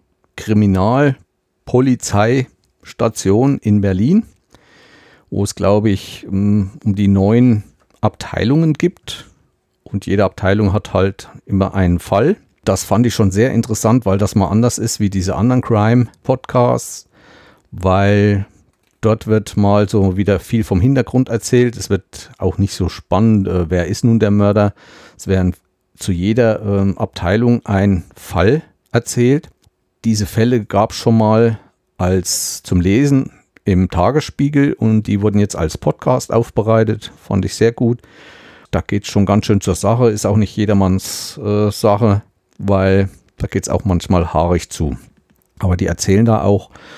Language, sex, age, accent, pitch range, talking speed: German, male, 50-69, German, 95-115 Hz, 145 wpm